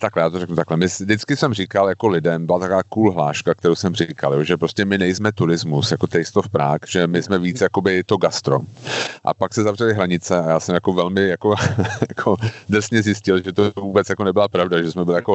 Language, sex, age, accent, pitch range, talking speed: English, male, 30-49, Czech, 95-115 Hz, 225 wpm